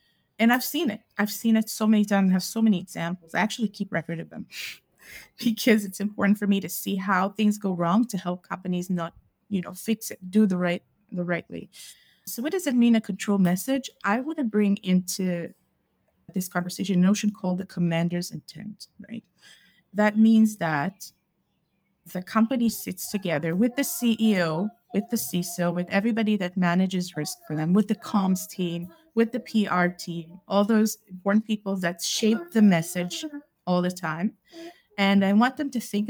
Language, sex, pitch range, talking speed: English, female, 180-220 Hz, 190 wpm